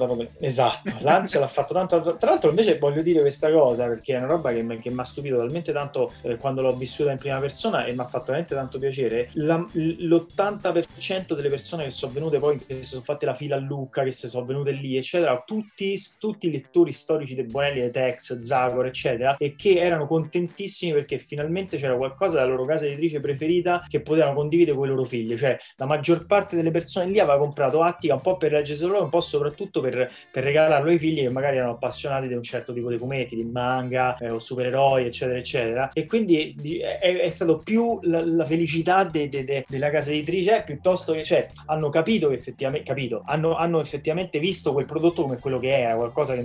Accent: native